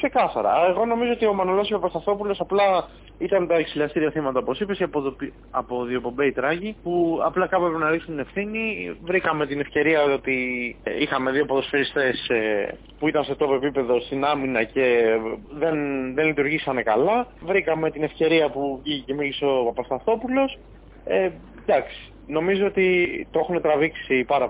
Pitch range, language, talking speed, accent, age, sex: 130-175 Hz, Greek, 145 wpm, native, 30-49, male